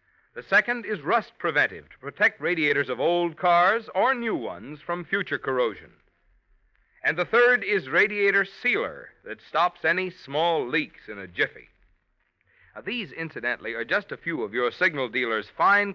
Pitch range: 135-205 Hz